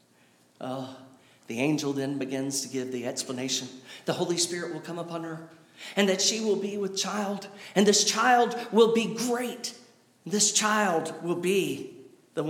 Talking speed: 165 wpm